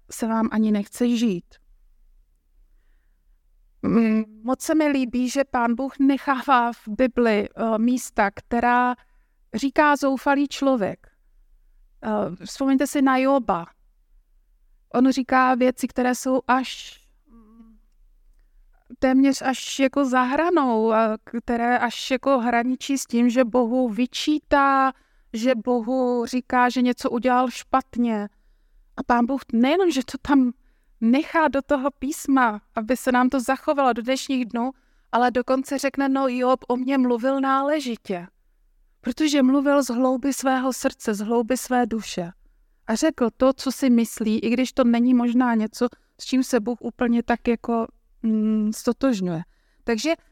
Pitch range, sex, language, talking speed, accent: 235-270 Hz, female, Czech, 130 wpm, native